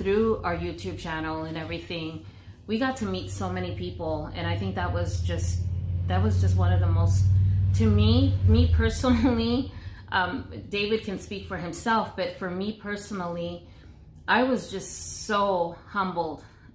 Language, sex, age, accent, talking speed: English, female, 30-49, American, 160 wpm